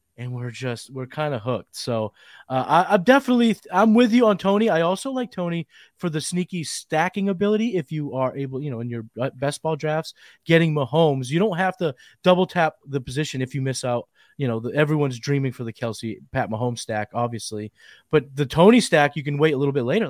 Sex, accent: male, American